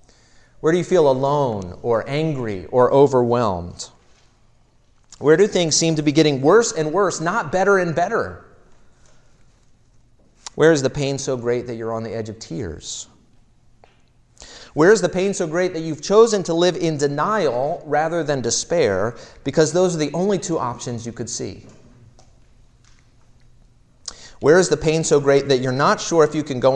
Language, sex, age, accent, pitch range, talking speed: English, male, 30-49, American, 120-180 Hz, 170 wpm